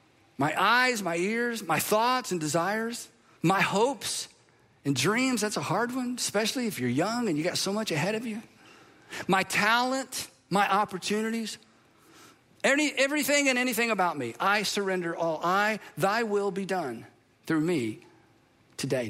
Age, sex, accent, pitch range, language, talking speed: 50-69, male, American, 155-215 Hz, English, 150 wpm